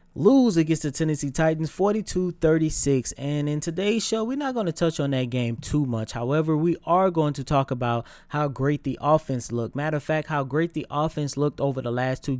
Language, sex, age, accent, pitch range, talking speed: English, male, 20-39, American, 135-180 Hz, 215 wpm